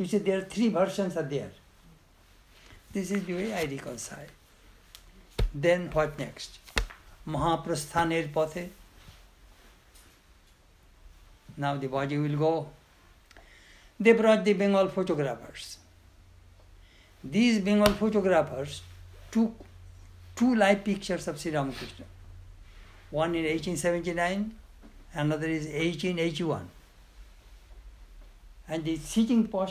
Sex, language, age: male, English, 60-79